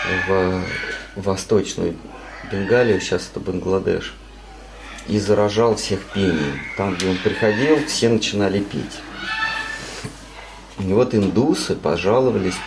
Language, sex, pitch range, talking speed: Russian, male, 90-115 Hz, 100 wpm